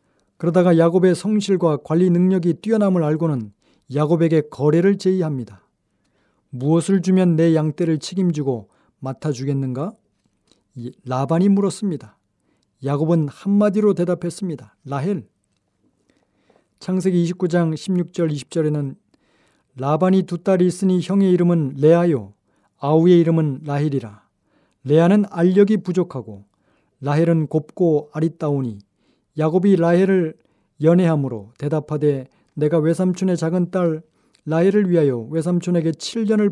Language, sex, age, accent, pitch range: Korean, male, 40-59, native, 145-180 Hz